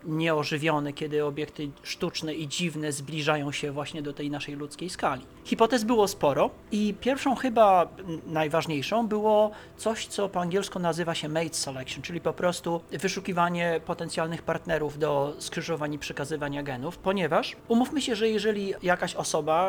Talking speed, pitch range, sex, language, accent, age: 145 wpm, 155-195 Hz, male, Polish, native, 30-49